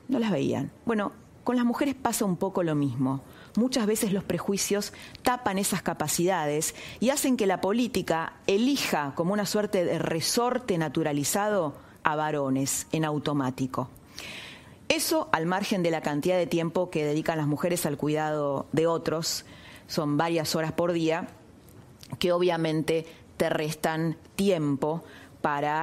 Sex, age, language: female, 30-49, Spanish